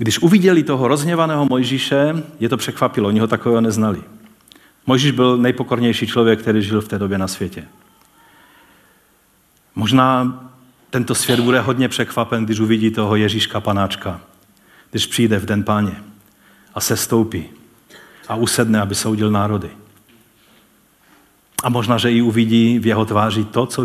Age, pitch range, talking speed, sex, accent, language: 40-59, 110-145 Hz, 145 wpm, male, native, Czech